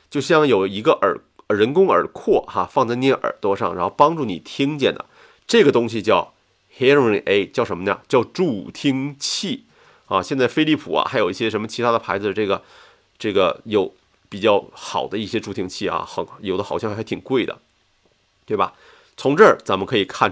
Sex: male